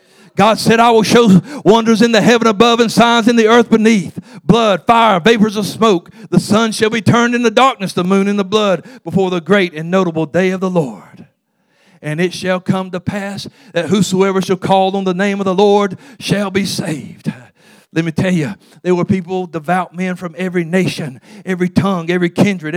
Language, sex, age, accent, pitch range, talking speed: English, male, 50-69, American, 185-215 Hz, 205 wpm